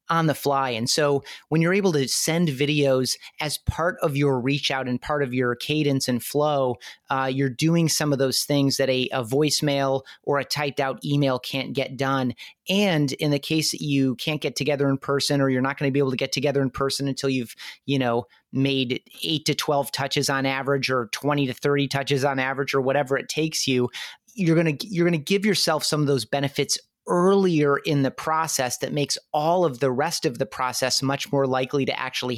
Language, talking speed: English, 215 wpm